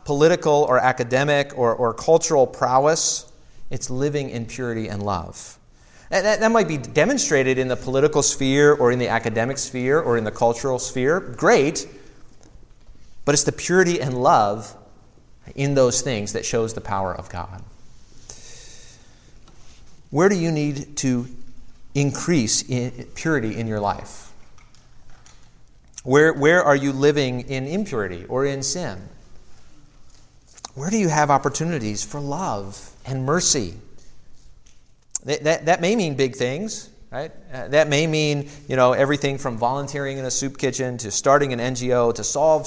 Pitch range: 115-150 Hz